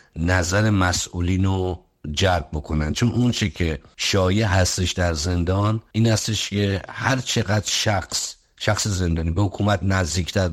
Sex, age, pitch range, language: male, 50-69, 85-105 Hz, Persian